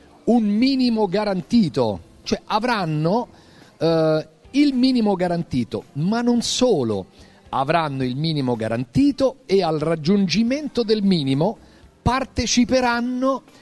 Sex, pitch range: male, 155-225 Hz